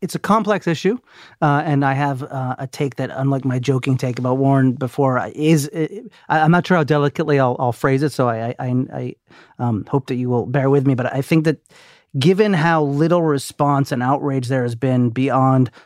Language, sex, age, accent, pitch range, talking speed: English, male, 30-49, American, 125-150 Hz, 210 wpm